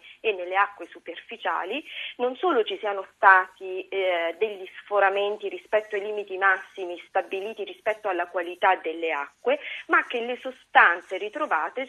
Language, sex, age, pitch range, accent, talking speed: Italian, female, 30-49, 175-225 Hz, native, 130 wpm